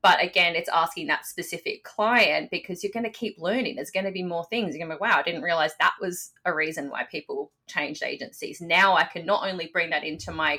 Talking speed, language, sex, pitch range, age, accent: 230 wpm, English, female, 165-215 Hz, 20-39, Australian